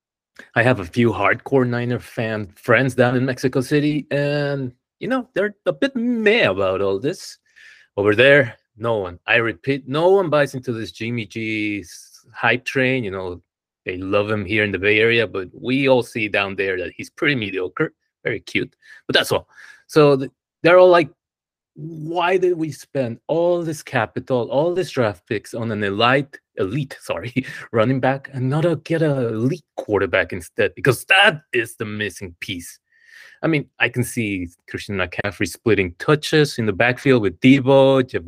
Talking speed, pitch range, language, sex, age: 175 wpm, 115-155 Hz, English, male, 30-49